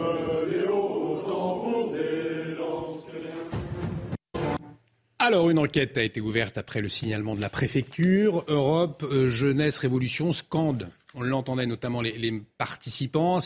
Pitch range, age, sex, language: 120-160 Hz, 40-59, male, French